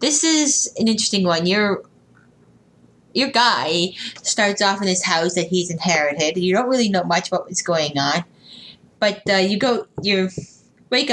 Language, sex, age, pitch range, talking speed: English, female, 20-39, 170-205 Hz, 165 wpm